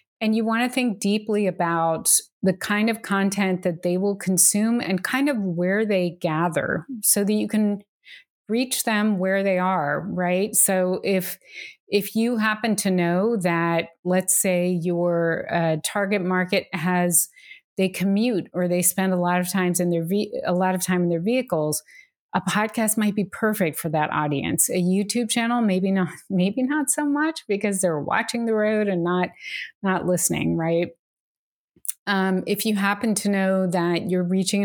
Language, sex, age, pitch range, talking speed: English, female, 30-49, 180-220 Hz, 175 wpm